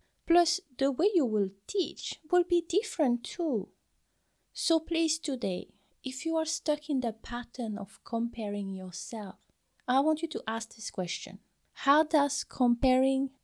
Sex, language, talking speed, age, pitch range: female, English, 145 wpm, 30-49, 200-260 Hz